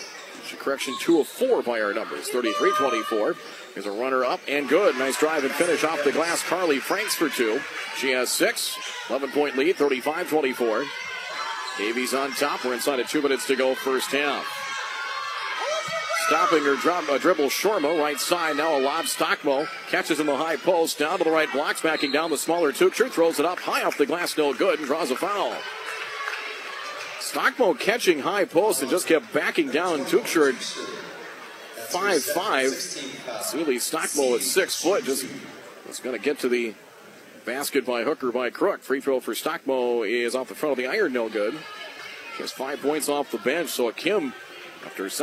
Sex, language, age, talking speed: male, English, 40-59, 185 wpm